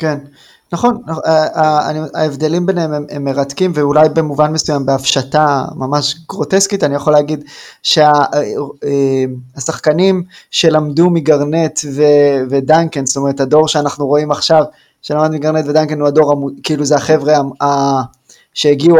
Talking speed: 115 wpm